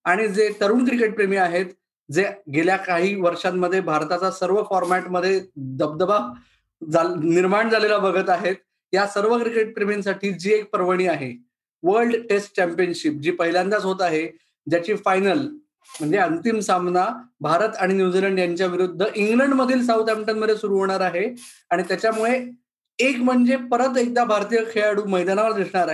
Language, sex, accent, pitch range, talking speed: Marathi, male, native, 190-240 Hz, 135 wpm